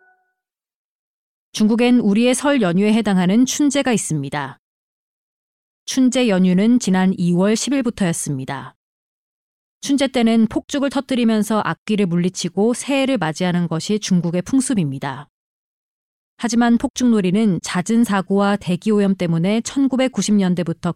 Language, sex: Korean, female